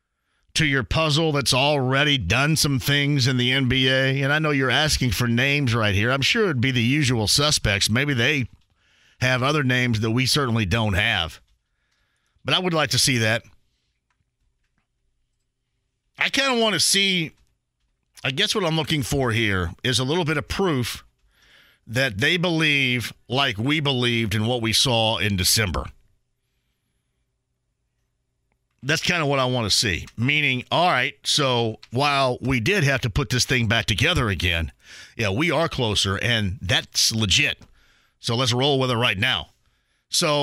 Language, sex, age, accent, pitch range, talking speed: English, male, 50-69, American, 120-145 Hz, 170 wpm